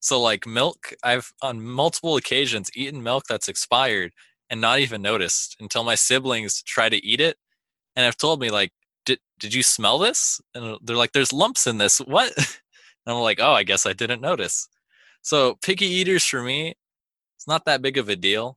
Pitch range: 105-135 Hz